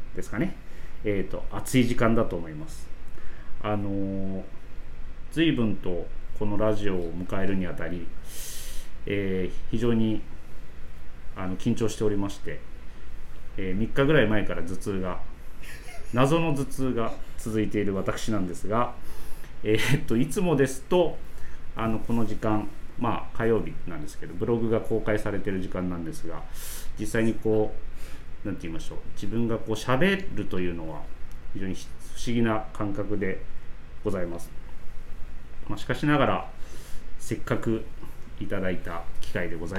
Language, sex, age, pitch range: Japanese, male, 30-49, 85-115 Hz